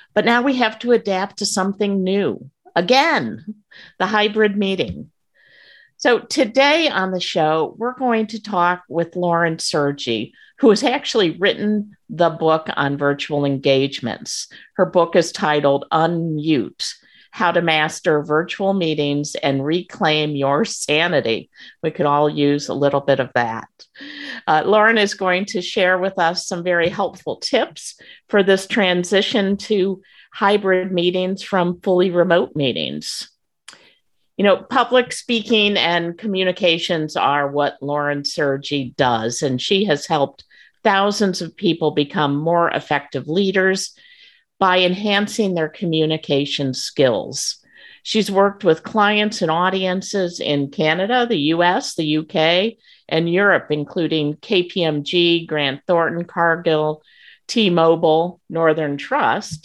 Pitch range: 150-200 Hz